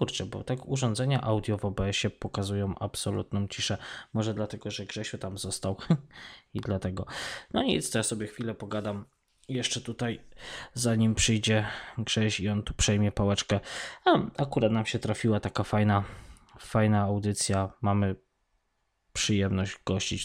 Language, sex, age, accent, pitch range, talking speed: Polish, male, 20-39, native, 100-115 Hz, 140 wpm